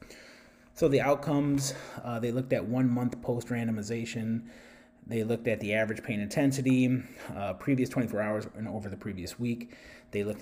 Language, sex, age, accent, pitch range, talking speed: English, male, 30-49, American, 105-130 Hz, 165 wpm